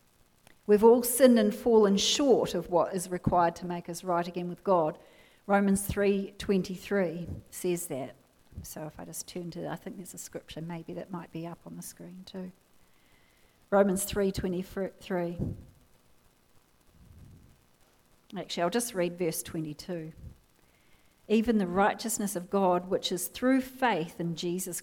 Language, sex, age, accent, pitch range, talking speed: English, female, 40-59, Australian, 170-200 Hz, 145 wpm